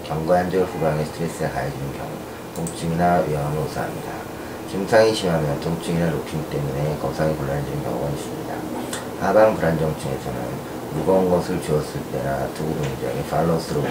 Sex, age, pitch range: male, 40-59, 75-85 Hz